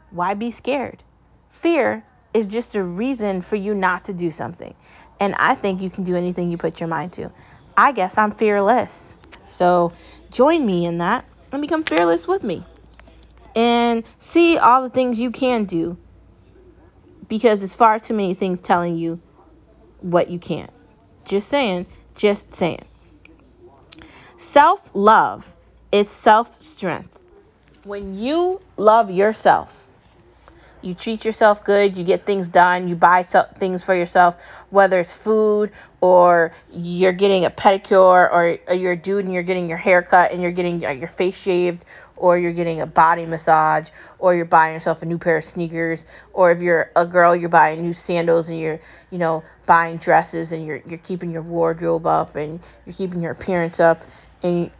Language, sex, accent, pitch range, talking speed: English, female, American, 170-210 Hz, 165 wpm